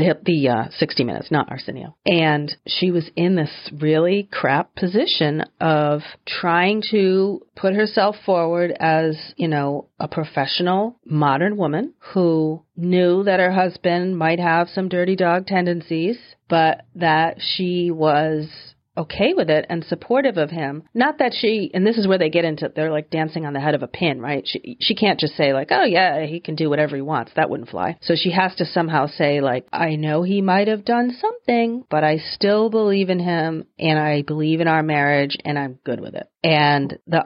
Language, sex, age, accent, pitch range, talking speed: English, female, 40-59, American, 150-190 Hz, 190 wpm